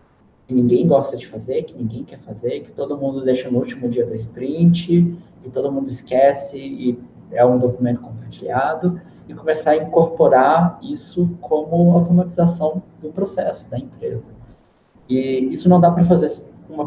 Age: 20-39